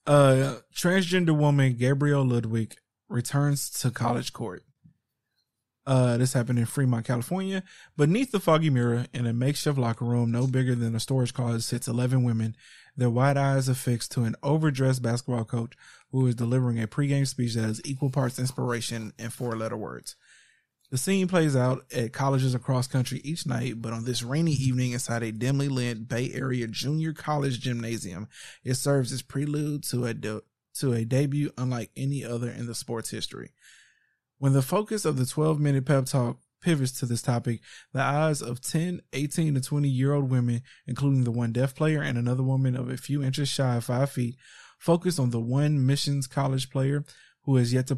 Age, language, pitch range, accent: 20-39, English, 120-140 Hz, American